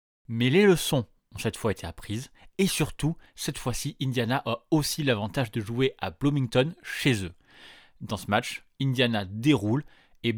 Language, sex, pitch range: French, male, 110-145 Hz